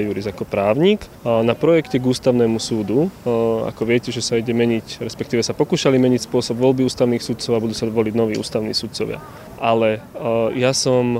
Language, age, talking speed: Slovak, 20-39, 170 wpm